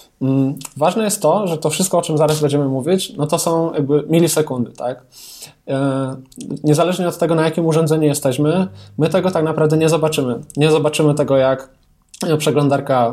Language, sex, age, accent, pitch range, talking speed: Polish, male, 20-39, native, 135-160 Hz, 160 wpm